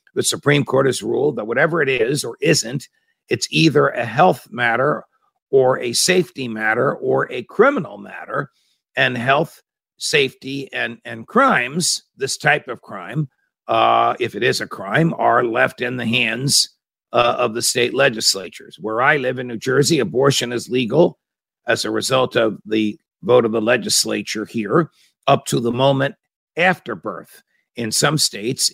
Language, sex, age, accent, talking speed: English, male, 50-69, American, 165 wpm